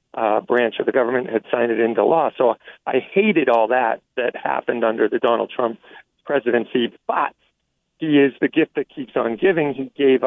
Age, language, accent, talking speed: 40-59, English, American, 195 wpm